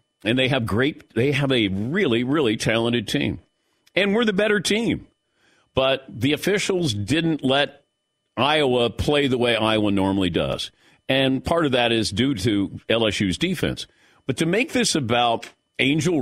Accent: American